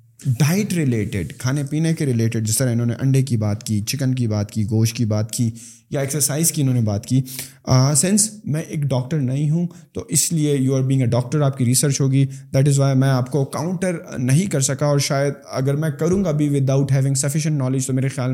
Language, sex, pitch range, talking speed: Urdu, male, 125-150 Hz, 235 wpm